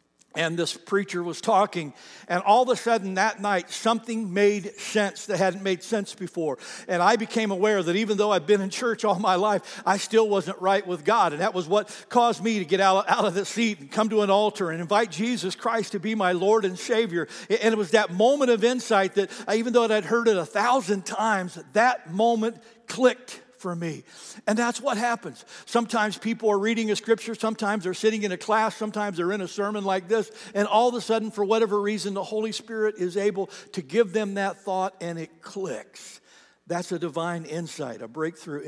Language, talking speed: English, 215 wpm